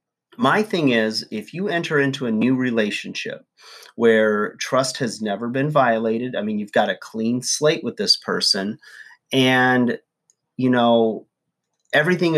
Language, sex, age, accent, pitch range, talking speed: English, male, 30-49, American, 110-130 Hz, 145 wpm